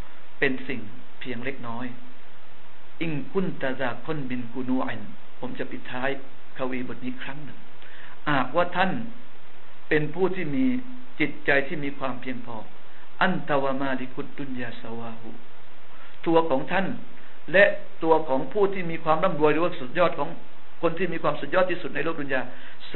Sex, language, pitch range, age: male, Thai, 130-160 Hz, 60-79